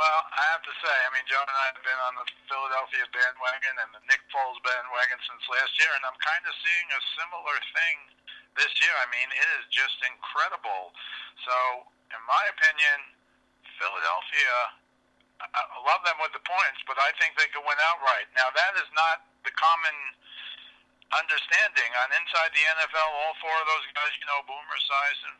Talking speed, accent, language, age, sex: 185 wpm, American, English, 50-69, male